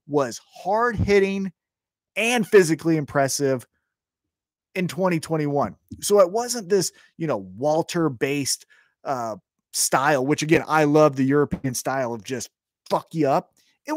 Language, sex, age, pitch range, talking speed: English, male, 30-49, 135-190 Hz, 135 wpm